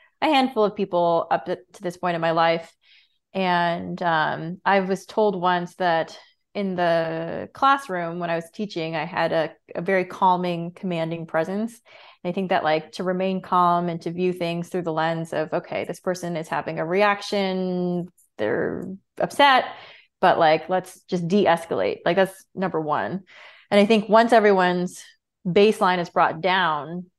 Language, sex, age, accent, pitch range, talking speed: English, female, 20-39, American, 170-205 Hz, 170 wpm